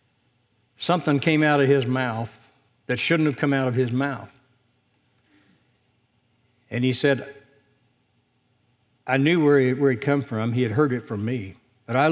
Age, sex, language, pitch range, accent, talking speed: 60-79, male, English, 120-140 Hz, American, 165 wpm